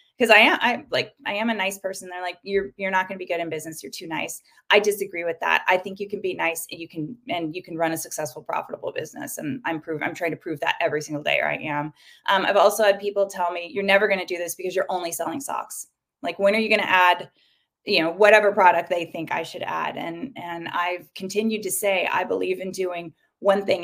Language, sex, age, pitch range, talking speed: English, female, 20-39, 175-205 Hz, 260 wpm